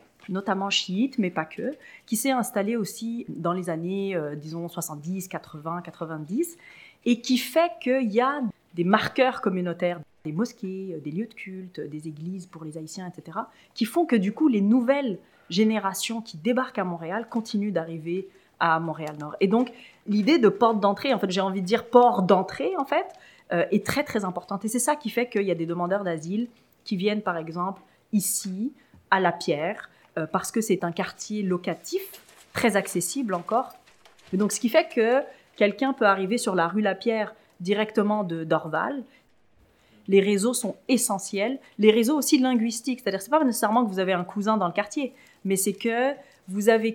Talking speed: 190 wpm